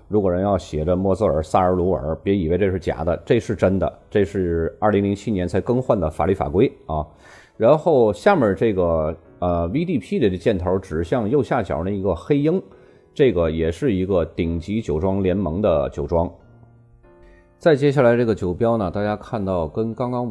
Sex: male